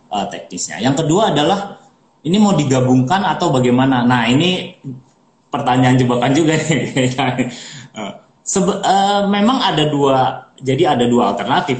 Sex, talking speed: male, 120 wpm